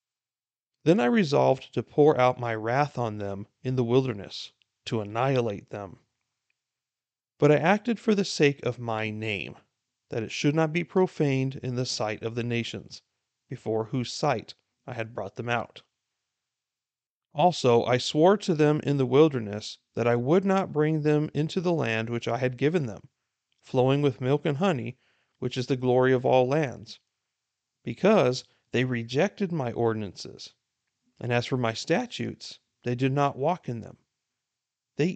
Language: English